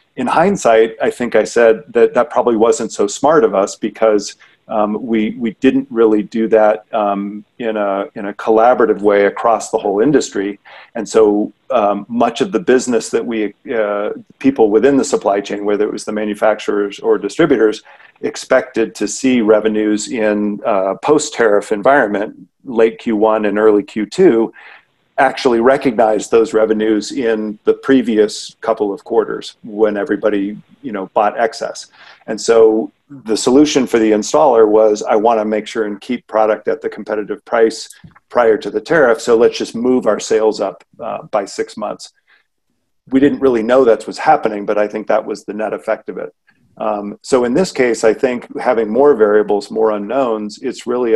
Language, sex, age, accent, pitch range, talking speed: English, male, 40-59, American, 105-120 Hz, 175 wpm